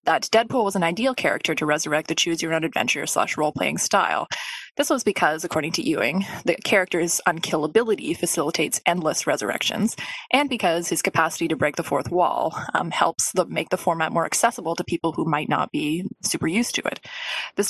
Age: 20-39